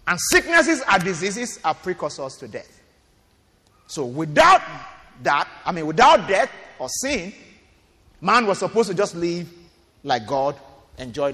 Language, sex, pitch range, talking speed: English, male, 140-210 Hz, 140 wpm